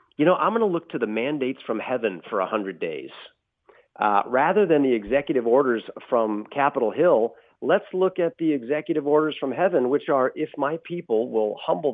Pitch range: 125-185 Hz